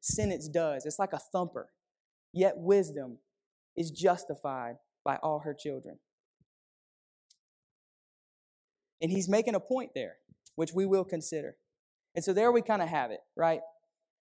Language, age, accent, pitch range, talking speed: English, 20-39, American, 160-210 Hz, 140 wpm